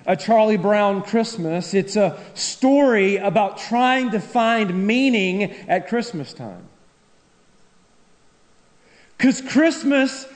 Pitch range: 195-265 Hz